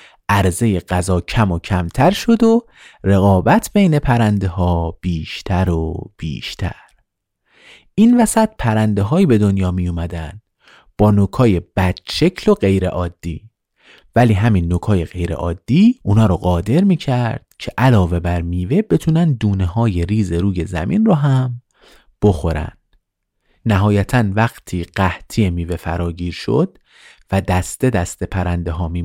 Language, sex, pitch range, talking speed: Persian, male, 90-120 Hz, 130 wpm